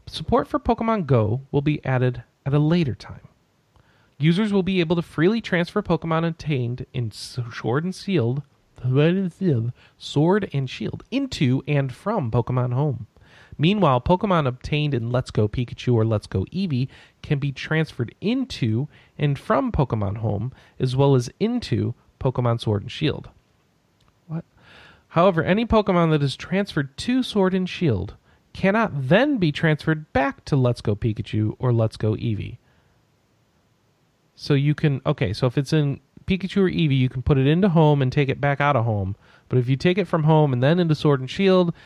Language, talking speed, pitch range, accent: English, 170 wpm, 120-165 Hz, American